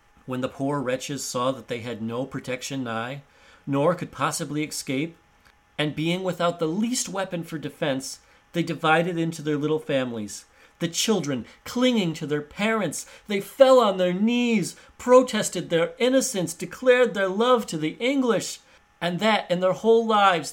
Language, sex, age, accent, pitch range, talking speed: English, male, 40-59, American, 140-215 Hz, 160 wpm